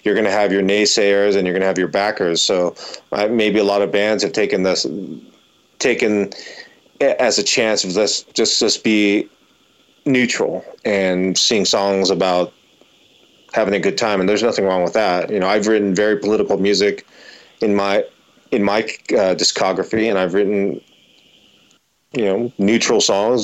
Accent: American